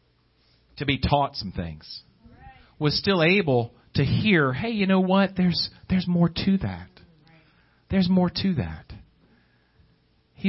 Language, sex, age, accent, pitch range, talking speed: English, male, 40-59, American, 100-155 Hz, 135 wpm